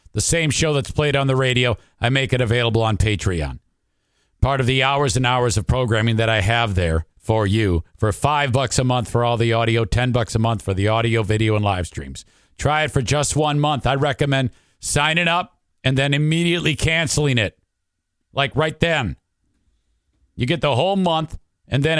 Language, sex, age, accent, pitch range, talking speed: English, male, 50-69, American, 105-155 Hz, 200 wpm